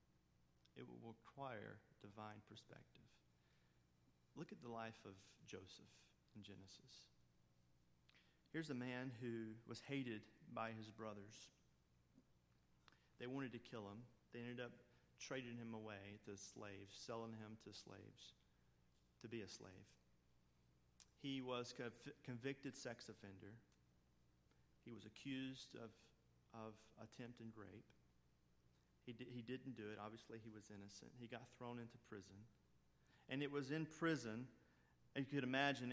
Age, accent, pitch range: 40-59, American, 95-130 Hz